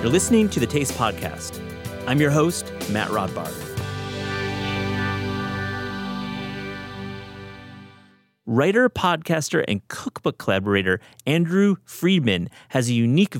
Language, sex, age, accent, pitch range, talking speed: English, male, 30-49, American, 100-145 Hz, 95 wpm